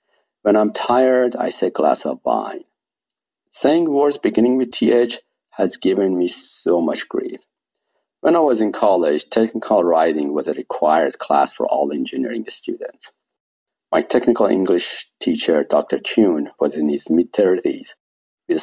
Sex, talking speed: male, 145 wpm